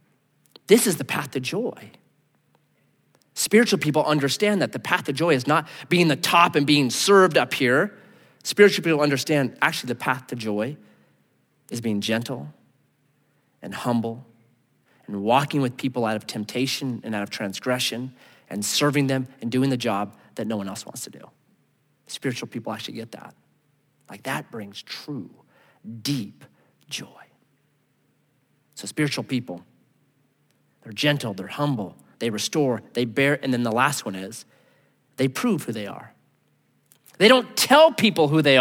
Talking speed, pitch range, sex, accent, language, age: 155 wpm, 115-175 Hz, male, American, English, 30-49